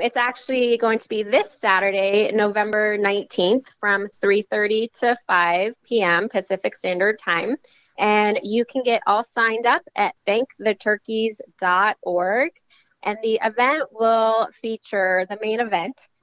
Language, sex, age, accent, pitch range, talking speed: English, female, 10-29, American, 195-240 Hz, 125 wpm